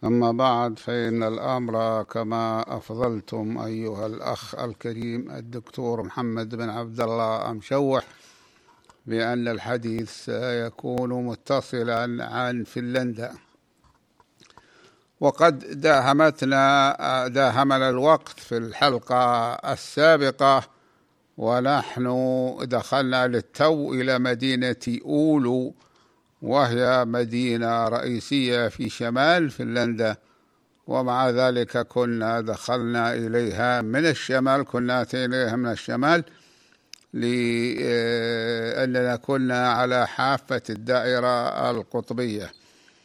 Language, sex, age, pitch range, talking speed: Arabic, male, 60-79, 115-135 Hz, 80 wpm